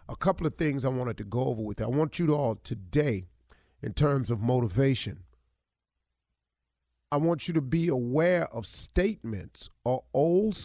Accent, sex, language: American, male, English